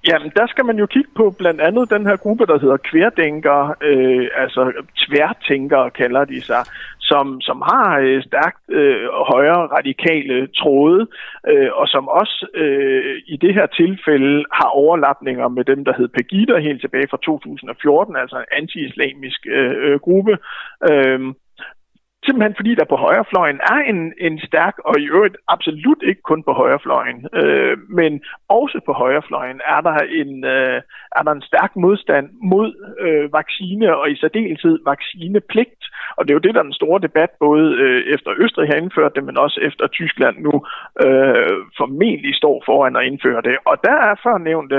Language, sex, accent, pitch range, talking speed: Danish, male, native, 140-235 Hz, 165 wpm